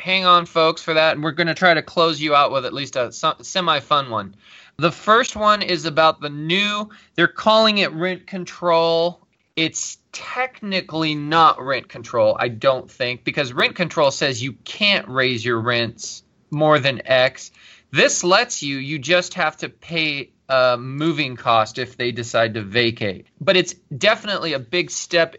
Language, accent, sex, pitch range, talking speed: English, American, male, 130-175 Hz, 170 wpm